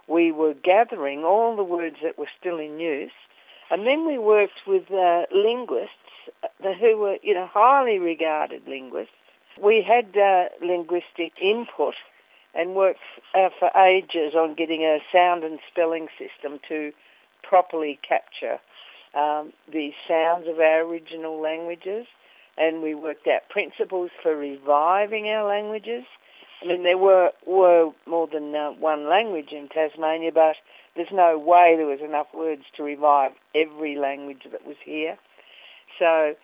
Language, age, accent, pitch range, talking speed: English, 60-79, Australian, 155-190 Hz, 145 wpm